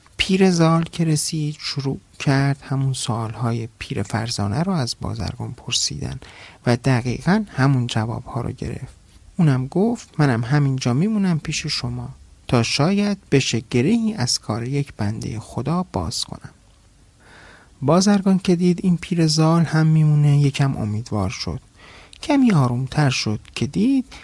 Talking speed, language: 135 wpm, Persian